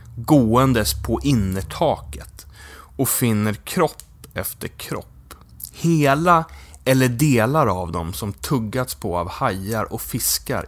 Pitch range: 95-150 Hz